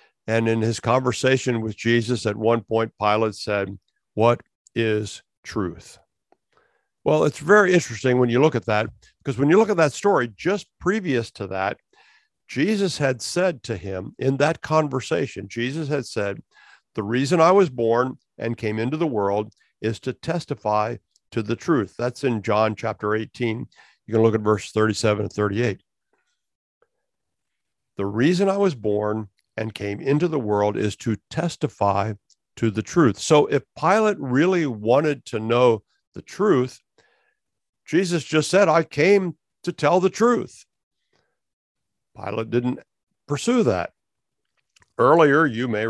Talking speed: 150 wpm